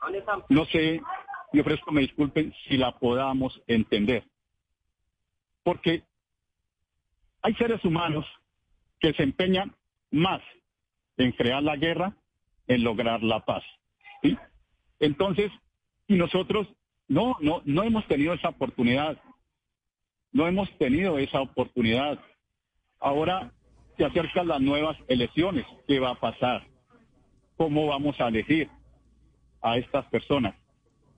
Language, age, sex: Spanish, 50-69, male